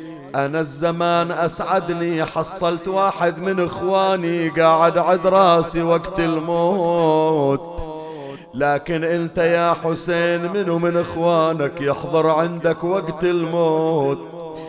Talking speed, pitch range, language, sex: 100 wpm, 165-180 Hz, Arabic, male